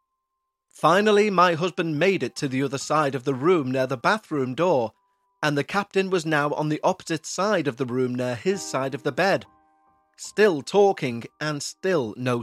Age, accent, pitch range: 30-49, British, 130-195 Hz